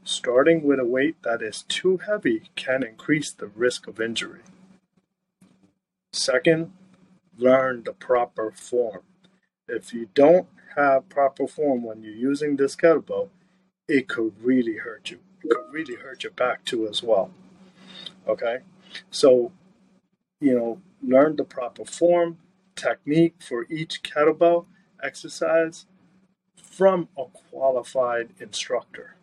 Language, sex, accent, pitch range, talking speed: English, male, American, 140-190 Hz, 125 wpm